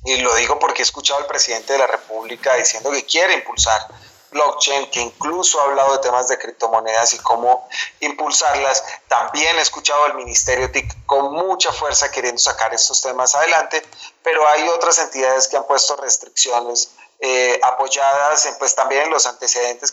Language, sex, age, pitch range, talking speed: Spanish, male, 30-49, 120-150 Hz, 170 wpm